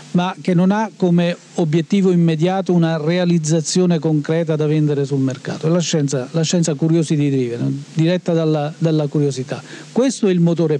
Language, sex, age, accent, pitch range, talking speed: Italian, male, 50-69, native, 145-175 Hz, 160 wpm